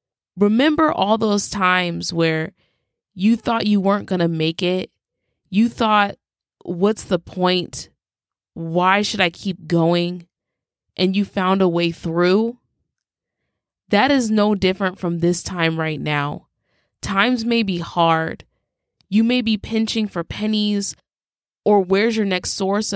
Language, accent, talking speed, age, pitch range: English, American, 140 wpm, 20-39, 170-215 Hz